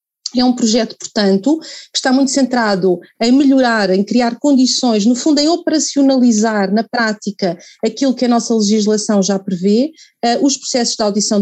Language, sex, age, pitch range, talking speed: Portuguese, female, 40-59, 210-250 Hz, 165 wpm